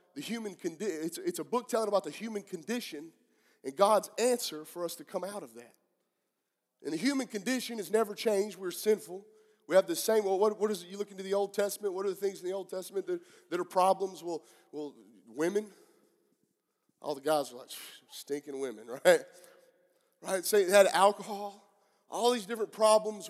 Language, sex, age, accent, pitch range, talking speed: English, male, 30-49, American, 175-220 Hz, 205 wpm